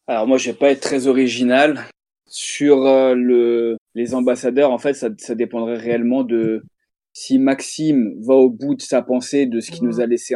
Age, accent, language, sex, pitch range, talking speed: 20-39, French, French, male, 115-135 Hz, 190 wpm